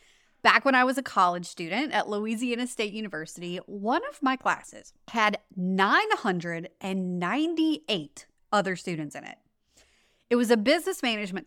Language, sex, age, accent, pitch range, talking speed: English, female, 30-49, American, 185-260 Hz, 135 wpm